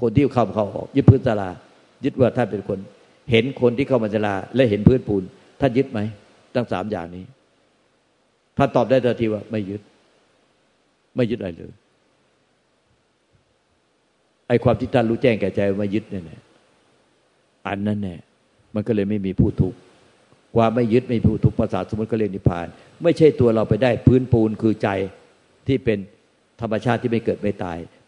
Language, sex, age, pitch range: Thai, male, 60-79, 100-120 Hz